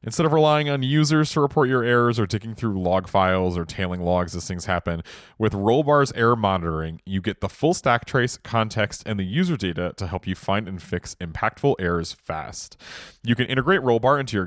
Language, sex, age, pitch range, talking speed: English, male, 30-49, 90-120 Hz, 205 wpm